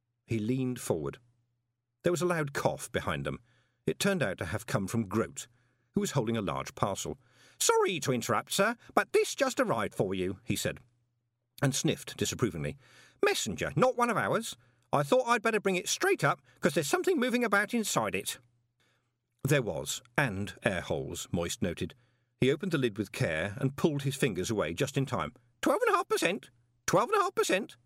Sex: male